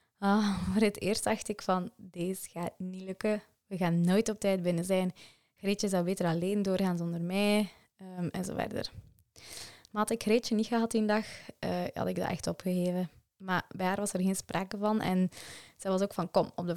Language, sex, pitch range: Dutch, female, 180-215 Hz